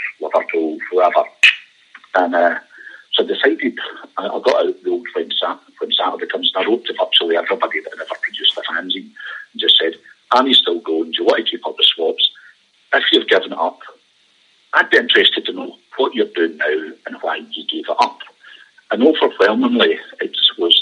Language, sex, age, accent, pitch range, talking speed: English, male, 50-69, British, 335-435 Hz, 195 wpm